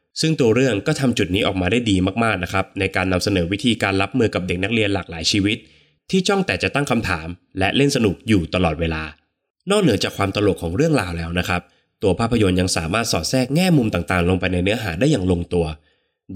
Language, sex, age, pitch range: Thai, male, 20-39, 90-120 Hz